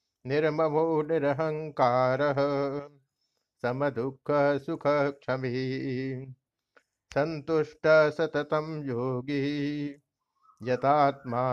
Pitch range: 130-150 Hz